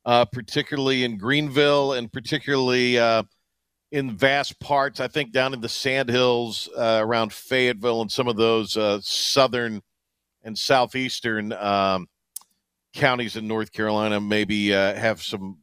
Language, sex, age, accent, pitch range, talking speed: English, male, 50-69, American, 100-140 Hz, 140 wpm